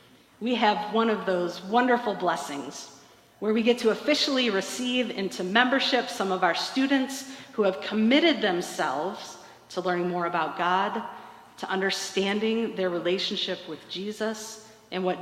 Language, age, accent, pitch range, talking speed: English, 40-59, American, 185-225 Hz, 140 wpm